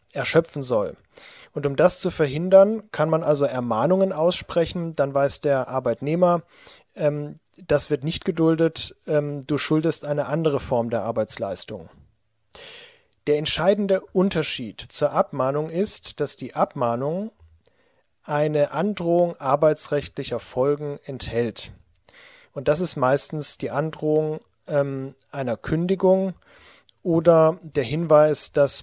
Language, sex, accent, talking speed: German, male, German, 115 wpm